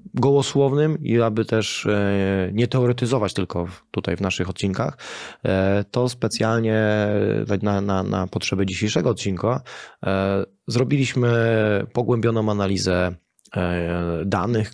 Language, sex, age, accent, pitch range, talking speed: Polish, male, 20-39, native, 95-120 Hz, 95 wpm